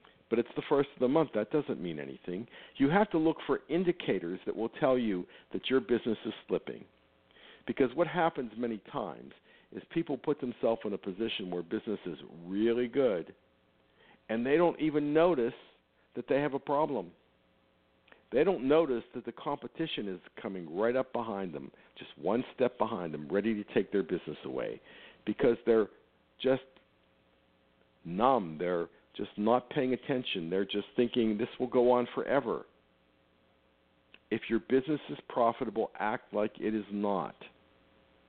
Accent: American